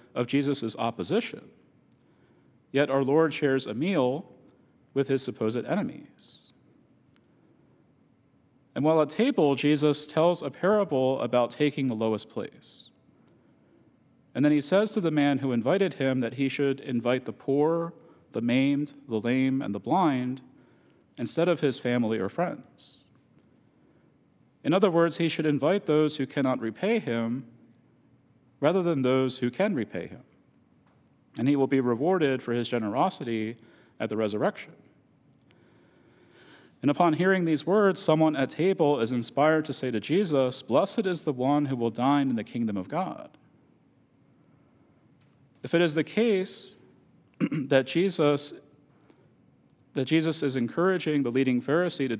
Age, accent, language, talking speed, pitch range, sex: 40-59, American, English, 145 wpm, 125-155 Hz, male